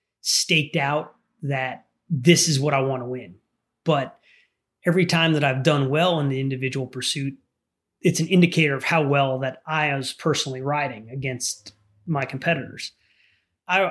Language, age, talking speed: English, 30-49, 155 wpm